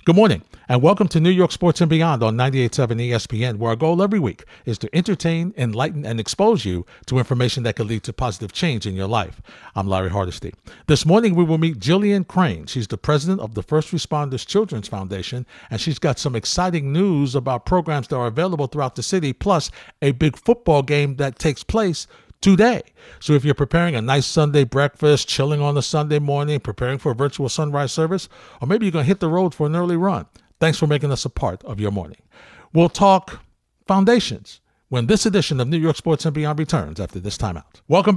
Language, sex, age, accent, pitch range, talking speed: English, male, 50-69, American, 120-170 Hz, 210 wpm